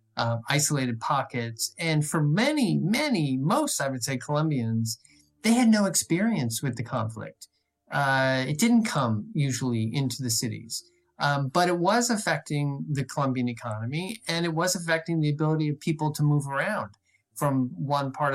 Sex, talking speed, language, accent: male, 160 wpm, English, American